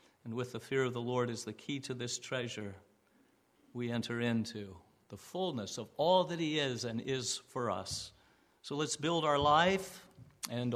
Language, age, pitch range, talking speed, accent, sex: English, 50-69, 115-140 Hz, 185 wpm, American, male